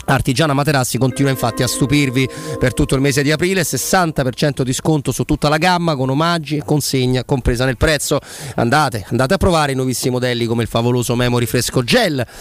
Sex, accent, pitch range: male, native, 125-170 Hz